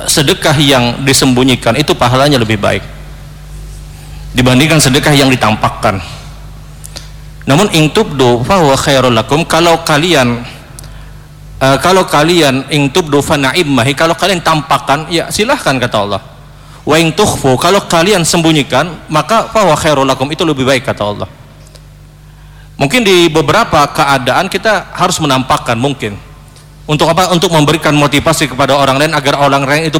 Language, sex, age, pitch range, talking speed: Indonesian, male, 40-59, 135-160 Hz, 125 wpm